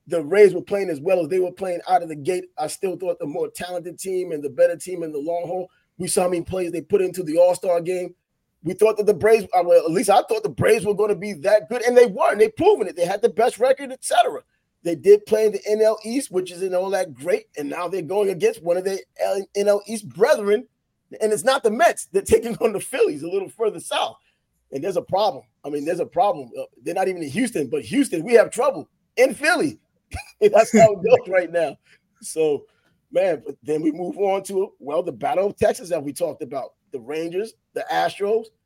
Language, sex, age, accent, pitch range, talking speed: English, male, 30-49, American, 180-260 Hz, 245 wpm